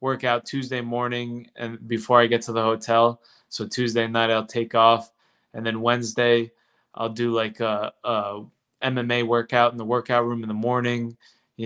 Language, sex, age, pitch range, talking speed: English, male, 20-39, 110-120 Hz, 175 wpm